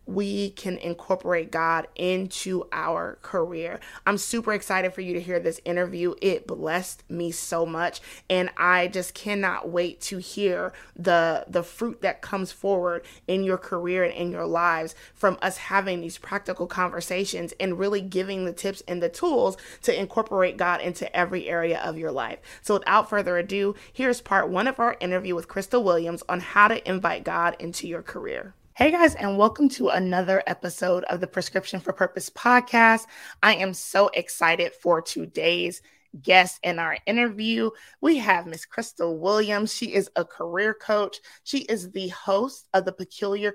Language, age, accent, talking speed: English, 30-49, American, 170 wpm